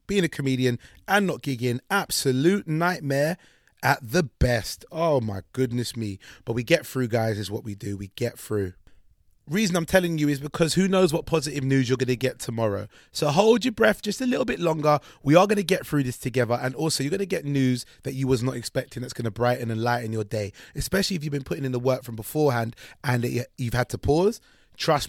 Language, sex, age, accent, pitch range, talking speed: English, male, 30-49, British, 120-165 Hz, 230 wpm